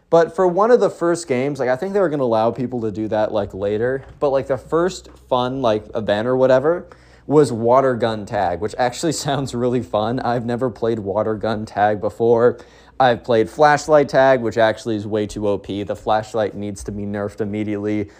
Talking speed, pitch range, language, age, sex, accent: 205 wpm, 110-145 Hz, English, 20-39, male, American